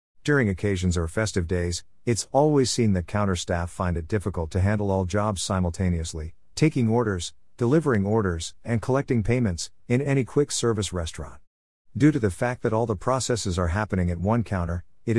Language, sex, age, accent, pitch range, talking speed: English, male, 50-69, American, 85-110 Hz, 180 wpm